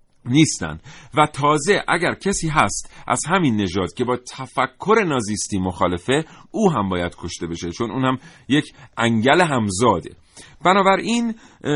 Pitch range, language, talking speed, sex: 100-150 Hz, Persian, 135 wpm, male